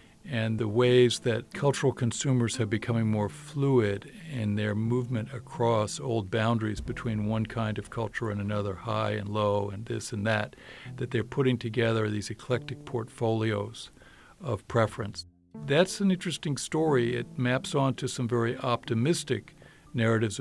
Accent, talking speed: American, 150 wpm